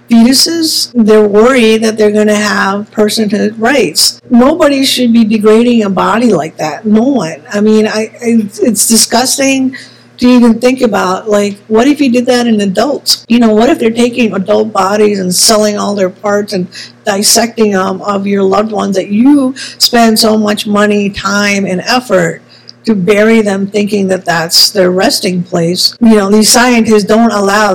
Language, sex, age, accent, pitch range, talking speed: English, female, 50-69, American, 195-230 Hz, 175 wpm